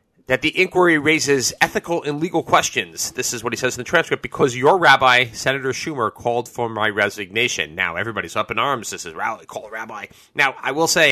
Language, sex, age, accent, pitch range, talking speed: English, male, 30-49, American, 100-130 Hz, 215 wpm